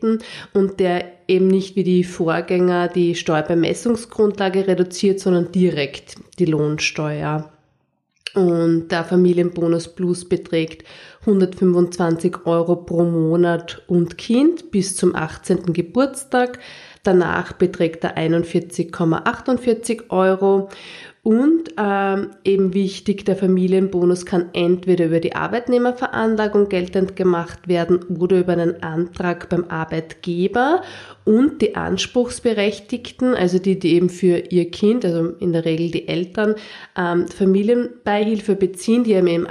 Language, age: German, 30-49